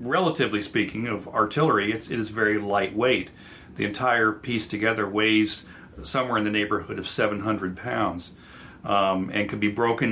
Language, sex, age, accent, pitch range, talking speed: English, male, 40-59, American, 95-110 Hz, 155 wpm